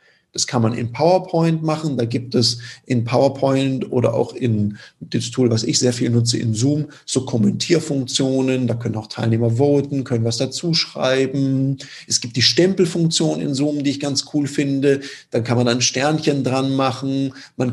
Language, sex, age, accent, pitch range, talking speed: German, male, 40-59, German, 130-165 Hz, 180 wpm